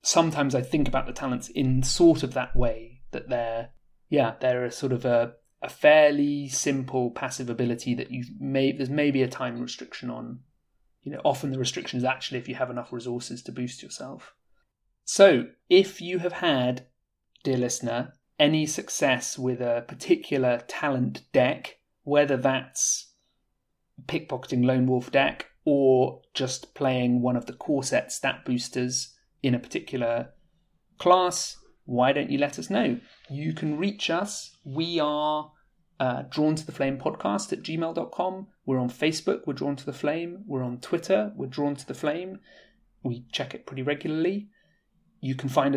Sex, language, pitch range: male, English, 125-160 Hz